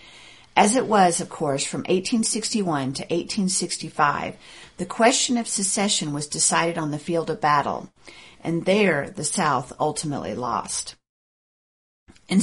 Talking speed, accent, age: 130 wpm, American, 50-69